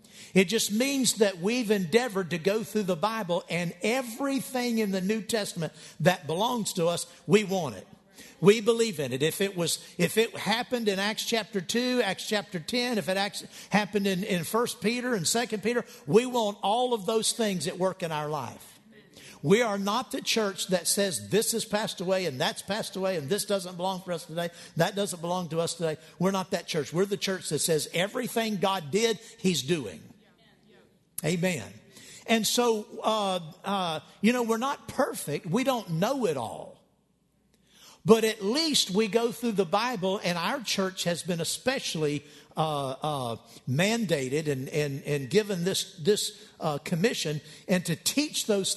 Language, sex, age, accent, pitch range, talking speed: English, male, 50-69, American, 175-220 Hz, 180 wpm